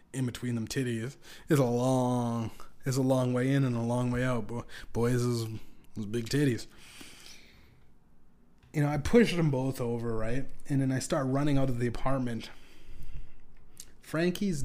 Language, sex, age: English, male, 20-39